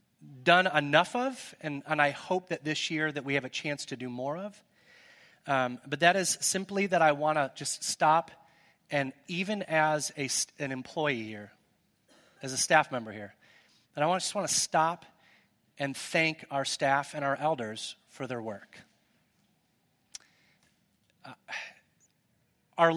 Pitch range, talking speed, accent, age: 135-180 Hz, 160 wpm, American, 30-49